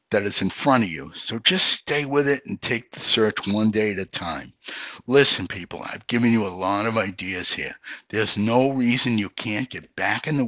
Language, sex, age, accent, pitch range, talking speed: English, male, 60-79, American, 105-130 Hz, 225 wpm